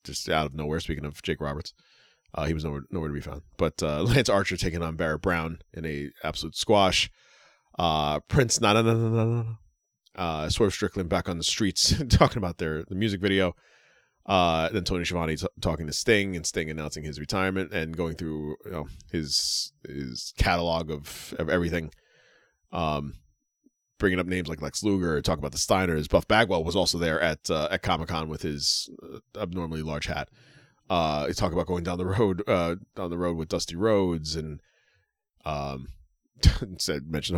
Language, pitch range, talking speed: English, 75-90 Hz, 190 wpm